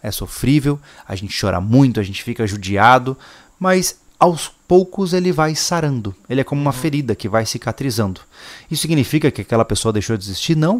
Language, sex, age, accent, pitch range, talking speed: Portuguese, male, 20-39, Brazilian, 110-150 Hz, 185 wpm